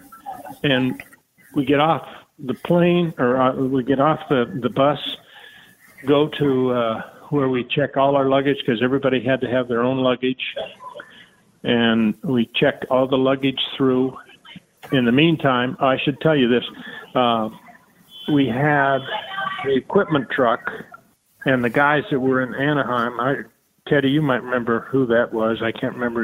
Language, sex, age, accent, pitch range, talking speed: English, male, 50-69, American, 125-150 Hz, 155 wpm